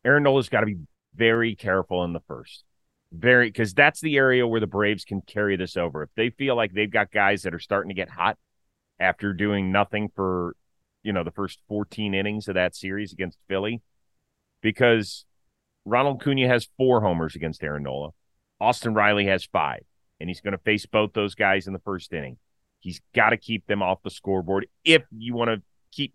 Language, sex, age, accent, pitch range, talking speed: English, male, 30-49, American, 95-120 Hz, 200 wpm